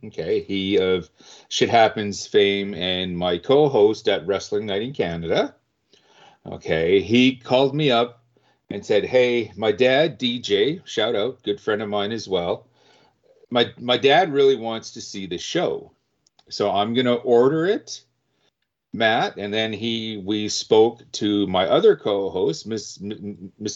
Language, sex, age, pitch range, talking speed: English, male, 40-59, 100-125 Hz, 150 wpm